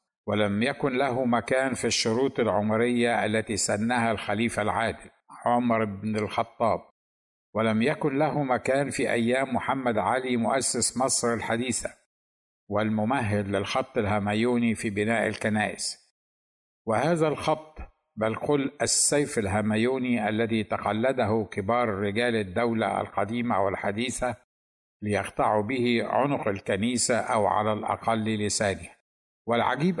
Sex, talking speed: male, 105 wpm